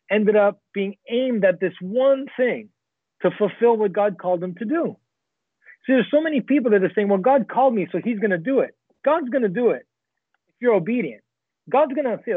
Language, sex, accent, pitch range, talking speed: English, male, American, 180-235 Hz, 225 wpm